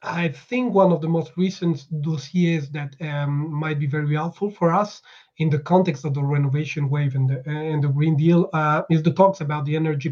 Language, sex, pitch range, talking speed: English, male, 150-180 Hz, 210 wpm